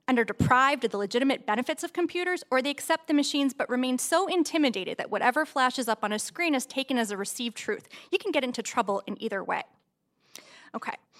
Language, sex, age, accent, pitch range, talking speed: English, female, 20-39, American, 230-315 Hz, 215 wpm